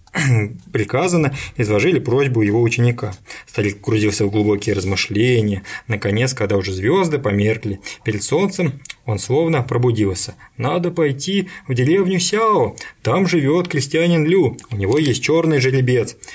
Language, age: Russian, 20-39